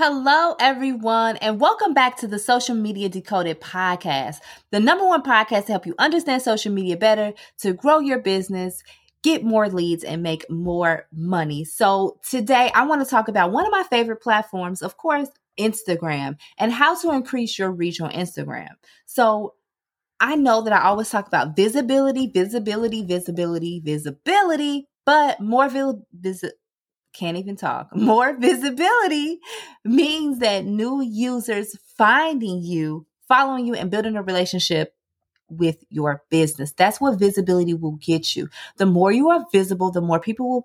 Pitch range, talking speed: 175-250 Hz, 155 wpm